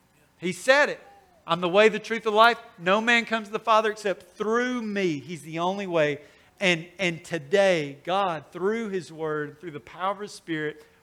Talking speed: 195 wpm